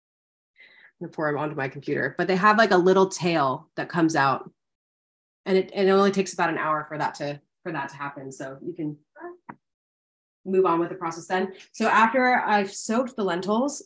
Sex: female